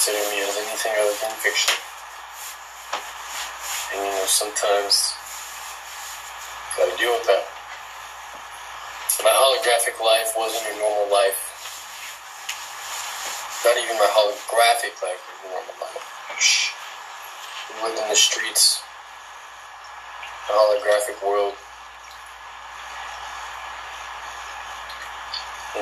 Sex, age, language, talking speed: male, 20-39, English, 90 wpm